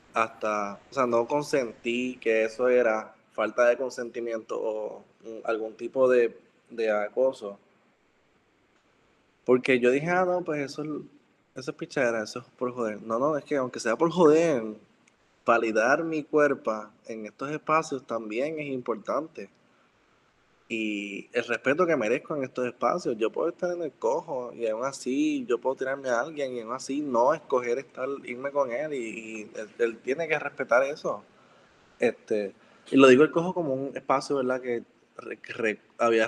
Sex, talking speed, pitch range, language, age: male, 160 wpm, 115-140 Hz, Spanish, 20-39